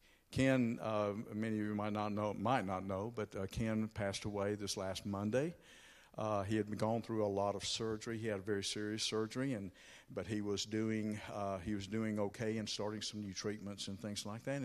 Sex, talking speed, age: male, 215 wpm, 60-79